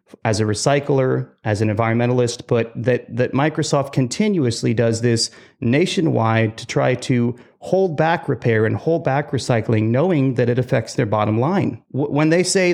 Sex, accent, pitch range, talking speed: male, American, 115-155 Hz, 160 wpm